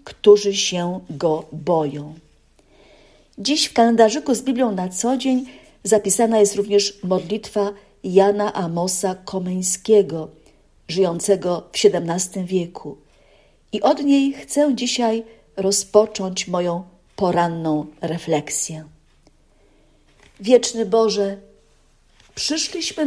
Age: 50-69